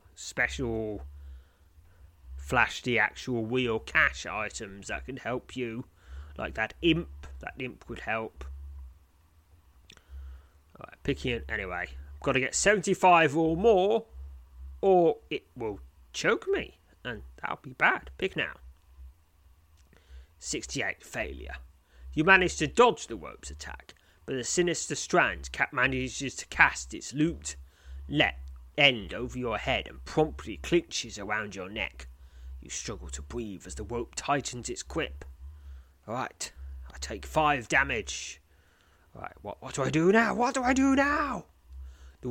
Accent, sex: British, male